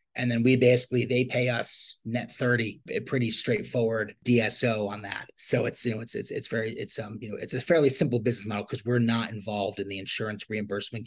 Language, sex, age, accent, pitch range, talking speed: English, male, 30-49, American, 115-130 Hz, 220 wpm